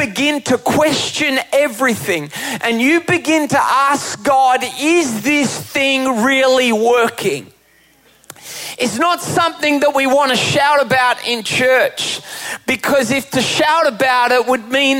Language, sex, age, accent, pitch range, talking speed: English, male, 30-49, Australian, 230-280 Hz, 135 wpm